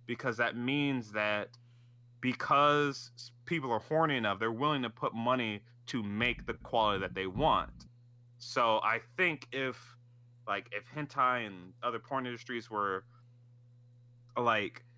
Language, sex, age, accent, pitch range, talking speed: English, male, 20-39, American, 105-125 Hz, 135 wpm